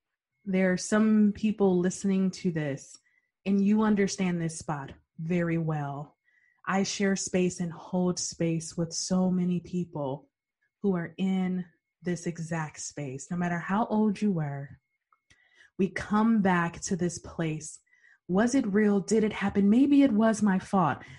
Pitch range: 165-200 Hz